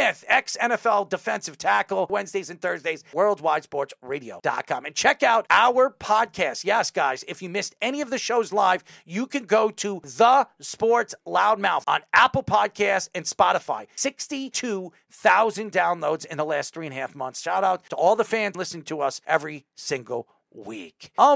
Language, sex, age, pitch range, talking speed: English, male, 40-59, 190-255 Hz, 160 wpm